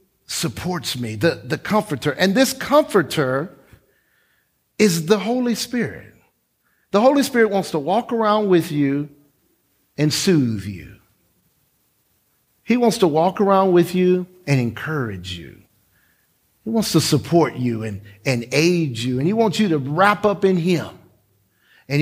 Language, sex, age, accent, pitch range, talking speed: English, male, 50-69, American, 145-220 Hz, 145 wpm